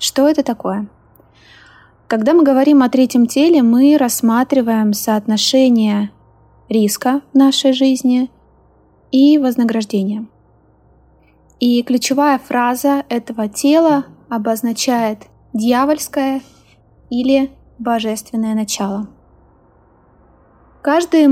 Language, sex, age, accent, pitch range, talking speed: Russian, female, 20-39, native, 220-260 Hz, 80 wpm